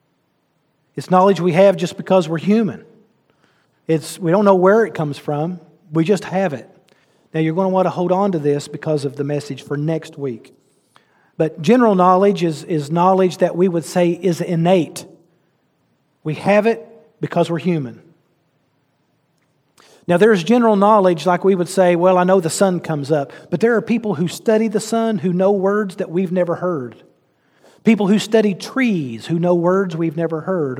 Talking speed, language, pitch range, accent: 185 wpm, English, 150-190 Hz, American